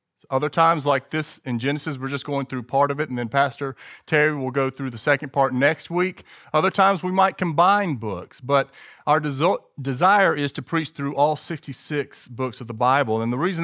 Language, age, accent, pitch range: English, 40-59, American, 125-160 Hz